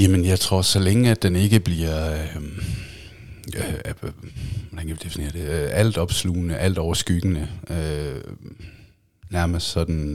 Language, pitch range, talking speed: Danish, 80-100 Hz, 120 wpm